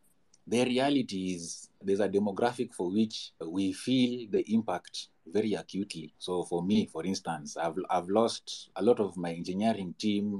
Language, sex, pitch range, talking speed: English, male, 90-115 Hz, 160 wpm